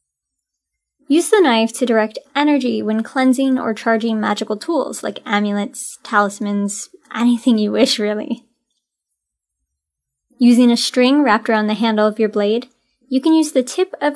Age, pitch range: 10-29, 210-270 Hz